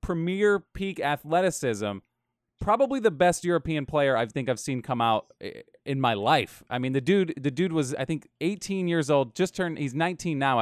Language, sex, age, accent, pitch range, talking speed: English, male, 20-39, American, 135-180 Hz, 190 wpm